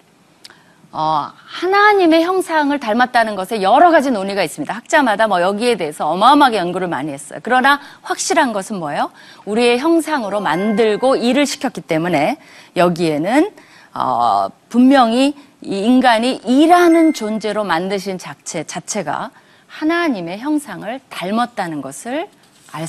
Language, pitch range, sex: Korean, 180-290 Hz, female